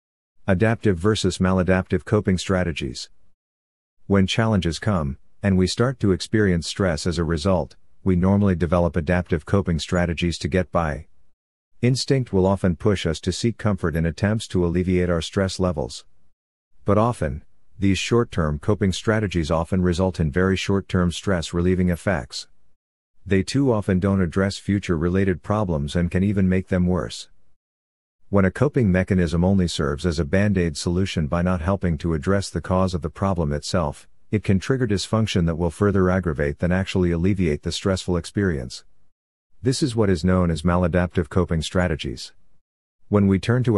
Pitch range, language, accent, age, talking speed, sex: 85-100 Hz, English, American, 50-69, 160 wpm, male